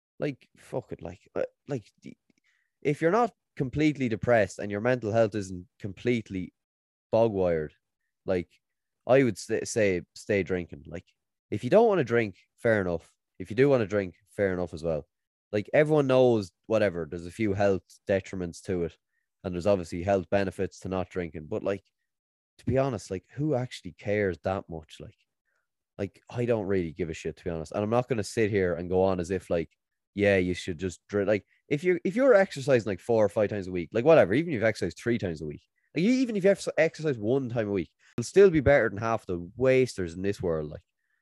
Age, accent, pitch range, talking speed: 20-39, Irish, 90-125 Hz, 220 wpm